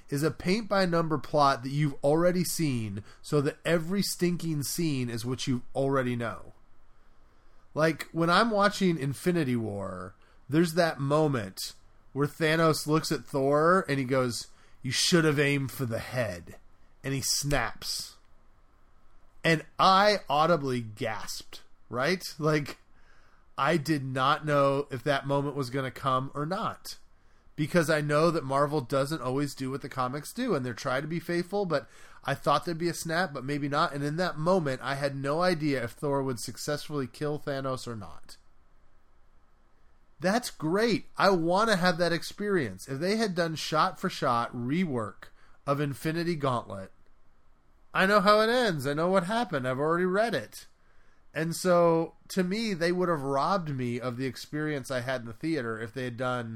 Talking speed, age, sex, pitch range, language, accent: 170 wpm, 30-49, male, 130-170 Hz, English, American